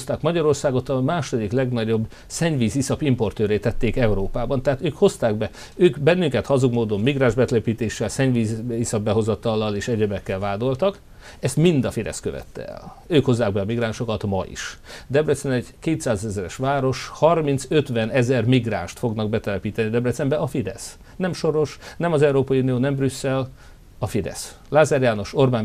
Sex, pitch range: male, 105-135 Hz